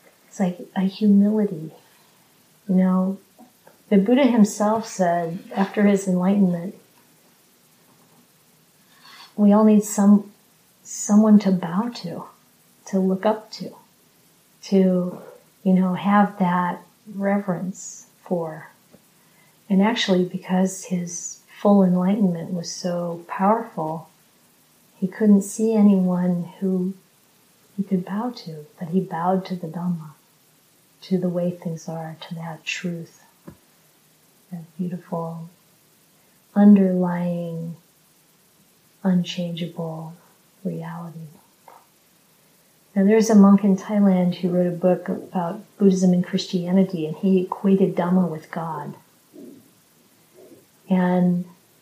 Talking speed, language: 105 wpm, English